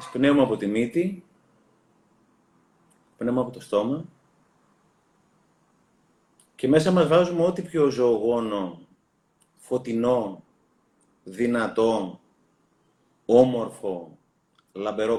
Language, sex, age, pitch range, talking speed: Greek, male, 30-49, 115-155 Hz, 75 wpm